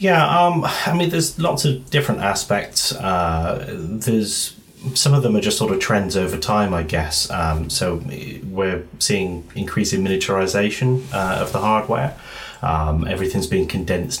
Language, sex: English, male